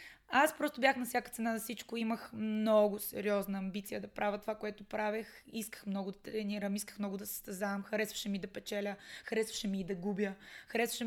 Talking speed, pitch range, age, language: 190 wpm, 205-240 Hz, 20-39, Bulgarian